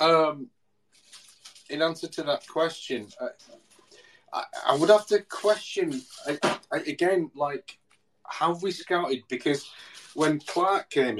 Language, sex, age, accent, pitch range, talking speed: English, male, 30-49, British, 110-165 Hz, 130 wpm